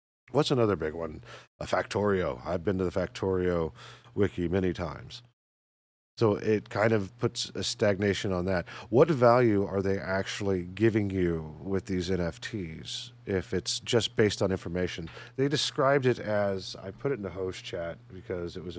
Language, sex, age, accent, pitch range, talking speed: English, male, 40-59, American, 85-120 Hz, 170 wpm